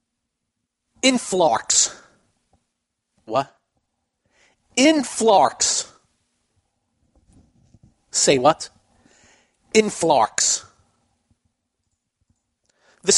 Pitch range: 150-205 Hz